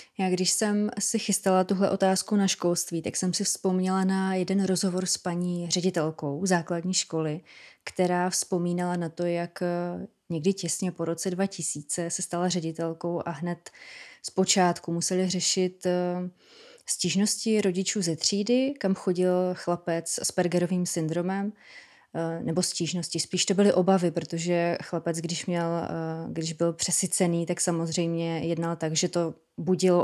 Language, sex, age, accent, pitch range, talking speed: Czech, female, 20-39, native, 170-190 Hz, 140 wpm